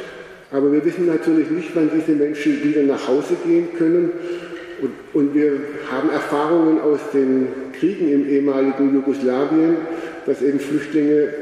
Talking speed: 140 wpm